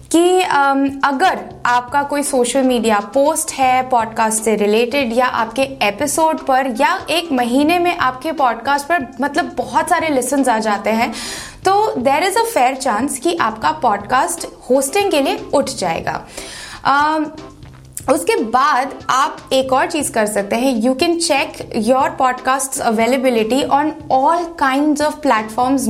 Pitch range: 240-310 Hz